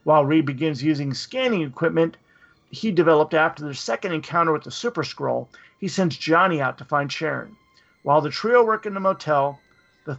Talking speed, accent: 185 wpm, American